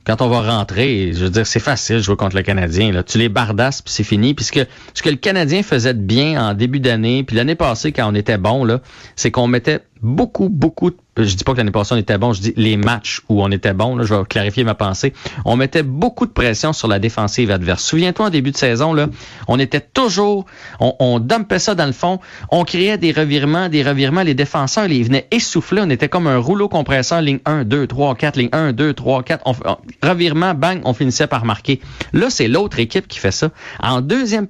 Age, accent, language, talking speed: 30-49, Canadian, French, 240 wpm